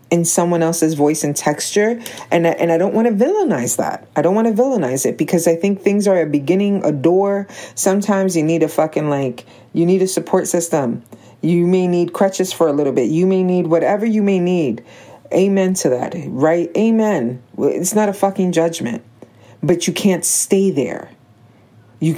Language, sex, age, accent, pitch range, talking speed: English, female, 40-59, American, 150-195 Hz, 190 wpm